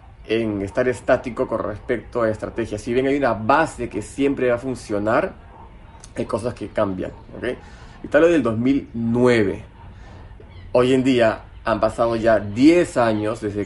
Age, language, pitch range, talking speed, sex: 30-49, Spanish, 105-140 Hz, 160 wpm, male